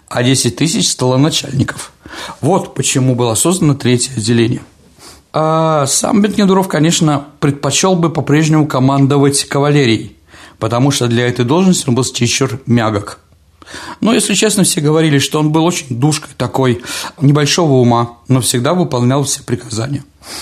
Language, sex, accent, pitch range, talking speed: Russian, male, native, 125-155 Hz, 140 wpm